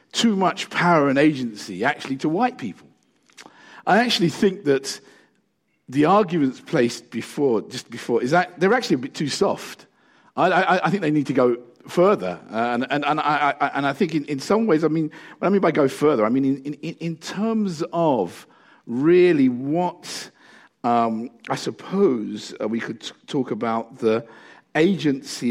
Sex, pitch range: male, 115-170 Hz